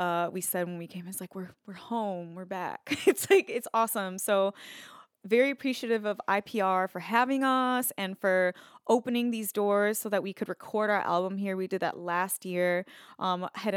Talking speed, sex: 195 wpm, female